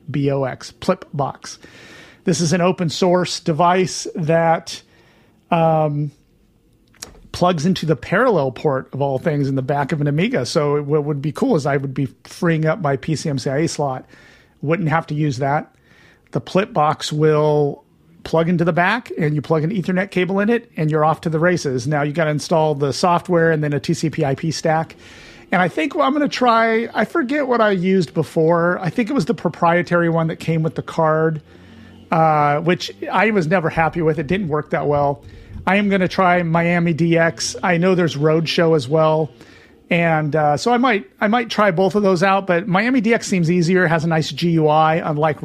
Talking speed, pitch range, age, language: 205 wpm, 150-180 Hz, 40-59, English